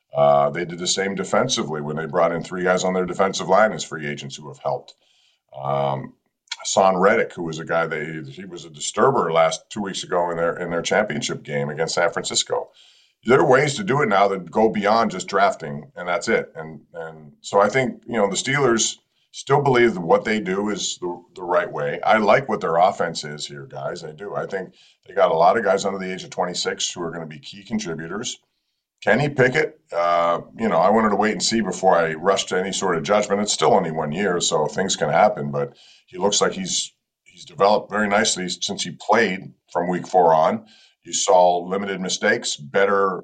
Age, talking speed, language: 50-69, 225 wpm, English